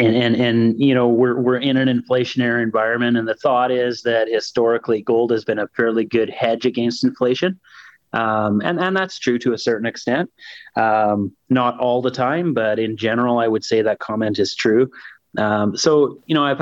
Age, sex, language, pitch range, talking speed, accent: 30-49, male, English, 110-125 Hz, 200 wpm, American